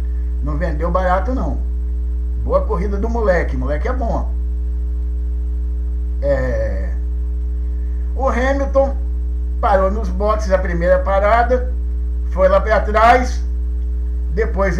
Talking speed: 95 wpm